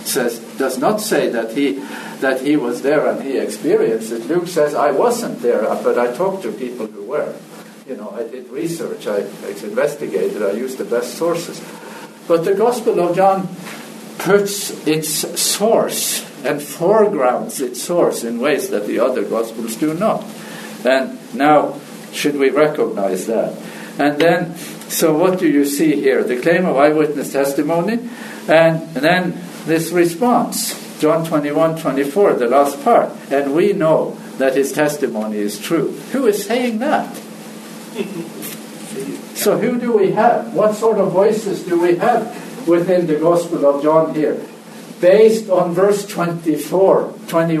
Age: 50-69